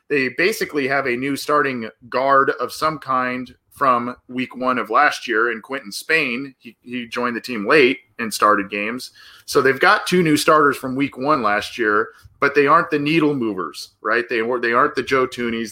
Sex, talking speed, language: male, 200 wpm, English